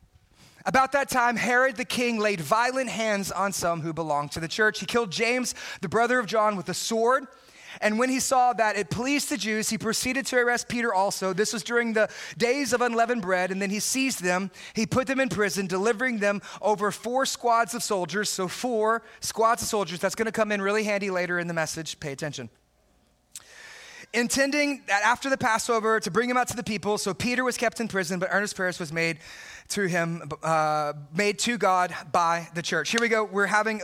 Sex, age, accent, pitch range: male, 30-49, American, 175-230 Hz